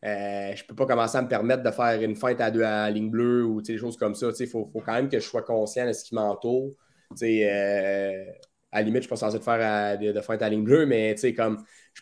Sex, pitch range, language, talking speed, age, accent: male, 105-120 Hz, French, 265 wpm, 20-39, Canadian